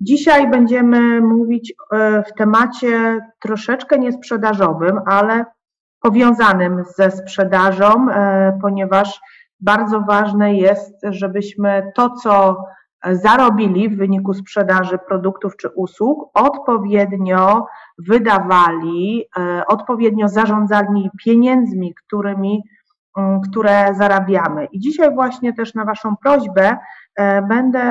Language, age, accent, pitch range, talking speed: Polish, 30-49, native, 190-230 Hz, 90 wpm